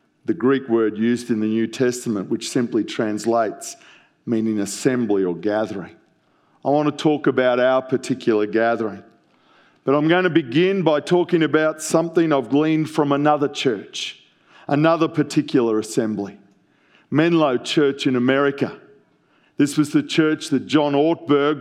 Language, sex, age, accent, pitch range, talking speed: English, male, 40-59, Australian, 135-165 Hz, 140 wpm